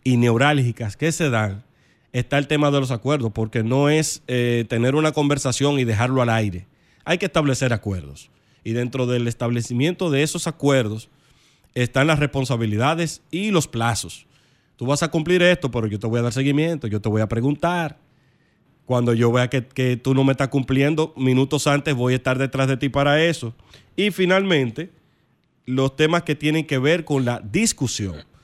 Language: Spanish